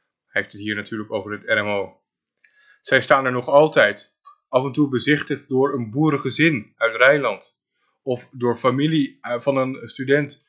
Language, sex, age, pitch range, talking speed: Dutch, male, 20-39, 110-140 Hz, 160 wpm